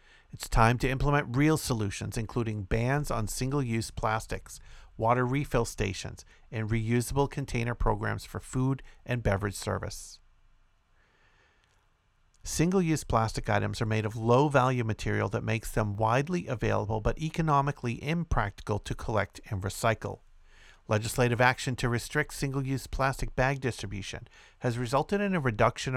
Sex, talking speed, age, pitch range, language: male, 130 wpm, 50-69, 110-130 Hz, English